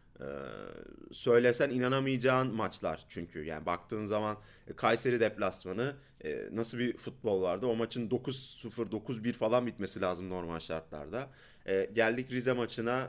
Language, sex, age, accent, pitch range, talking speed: Turkish, male, 30-49, native, 105-140 Hz, 135 wpm